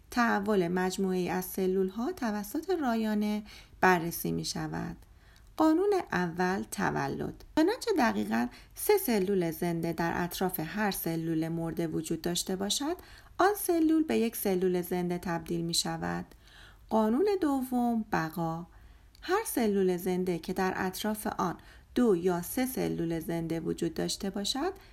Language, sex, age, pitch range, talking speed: Persian, female, 40-59, 170-225 Hz, 130 wpm